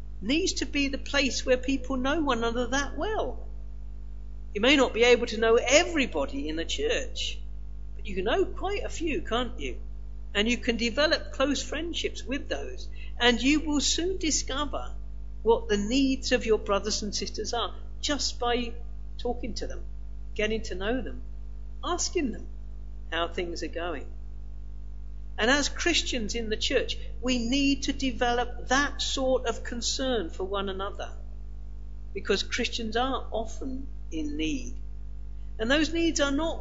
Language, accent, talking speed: English, British, 160 wpm